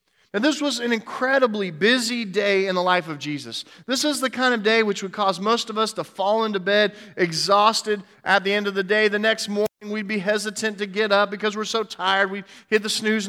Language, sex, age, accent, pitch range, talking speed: English, male, 40-59, American, 165-215 Hz, 235 wpm